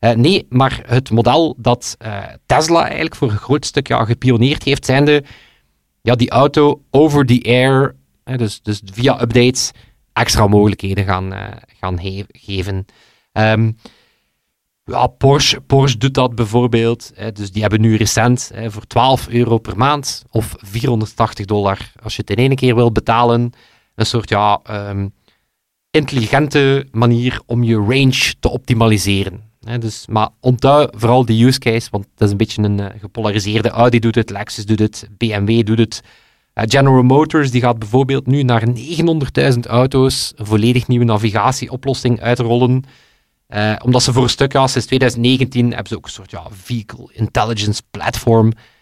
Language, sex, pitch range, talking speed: Dutch, male, 110-125 Hz, 165 wpm